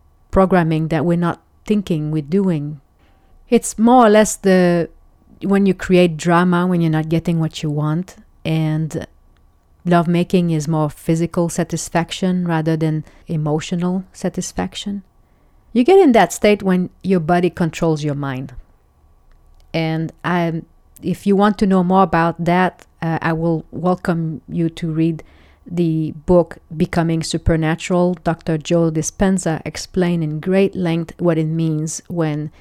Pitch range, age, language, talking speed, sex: 155-180 Hz, 30-49, English, 140 wpm, female